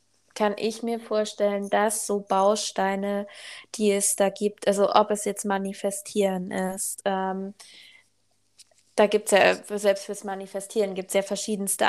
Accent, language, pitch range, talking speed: German, German, 195-220 Hz, 145 wpm